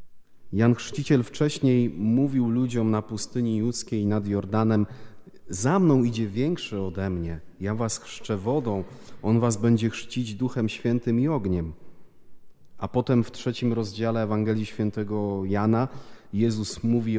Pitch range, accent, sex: 105-125 Hz, native, male